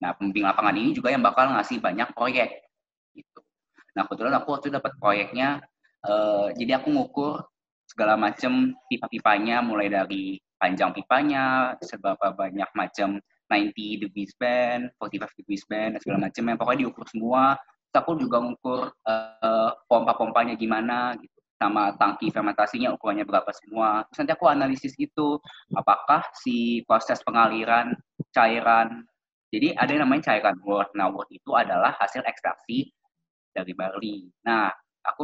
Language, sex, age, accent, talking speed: Indonesian, male, 20-39, native, 140 wpm